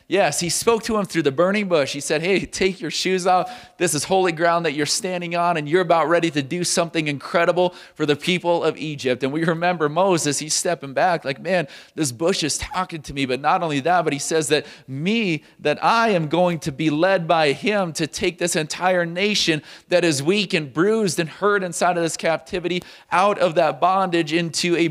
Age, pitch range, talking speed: 30-49, 155-185 Hz, 220 wpm